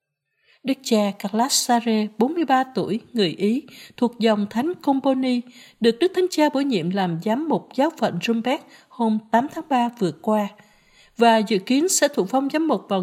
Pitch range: 200-260 Hz